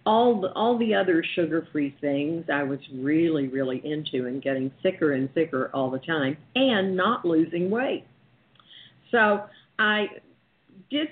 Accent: American